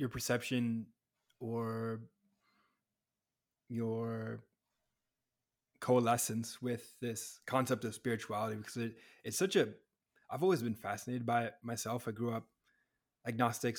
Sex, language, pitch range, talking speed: male, English, 115-125 Hz, 110 wpm